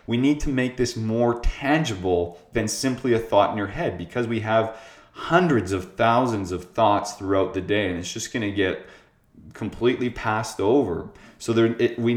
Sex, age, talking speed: male, 20-39, 175 wpm